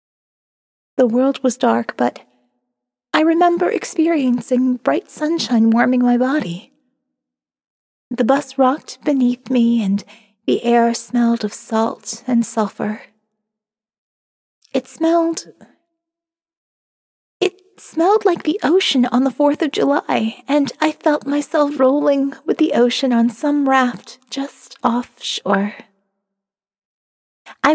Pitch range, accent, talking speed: 220-295 Hz, American, 110 wpm